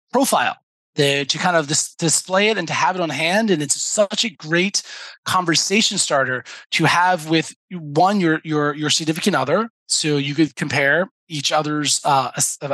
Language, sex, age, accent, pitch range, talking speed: English, male, 20-39, American, 145-185 Hz, 170 wpm